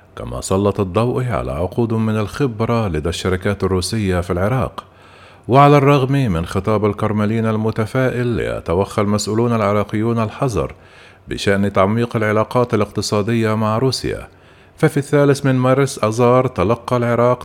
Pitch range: 95-115 Hz